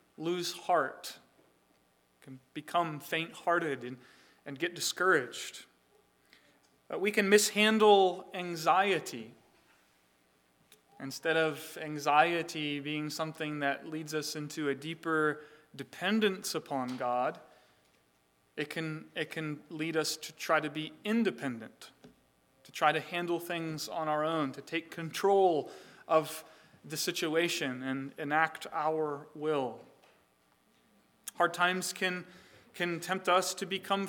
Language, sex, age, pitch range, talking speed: English, male, 30-49, 145-180 Hz, 115 wpm